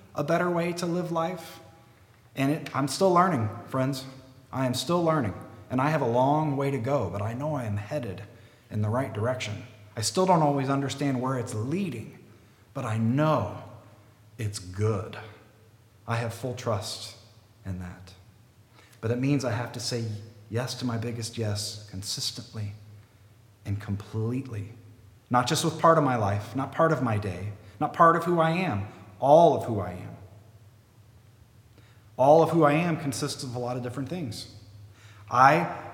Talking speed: 170 wpm